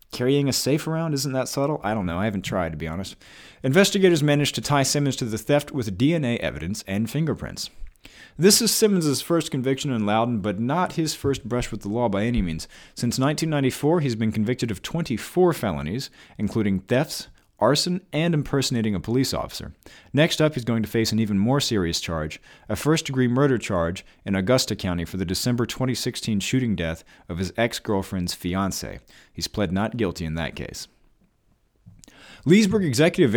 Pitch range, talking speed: 100-145 Hz, 180 wpm